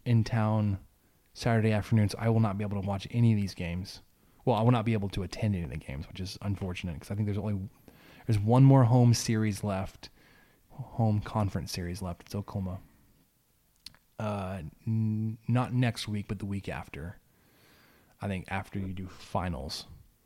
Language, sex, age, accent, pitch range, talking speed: English, male, 20-39, American, 100-115 Hz, 180 wpm